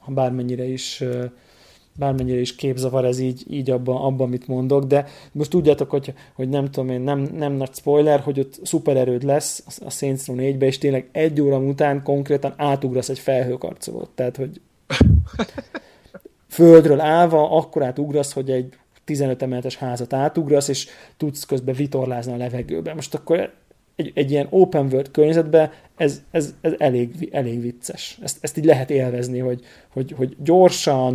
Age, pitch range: 20-39, 130-150 Hz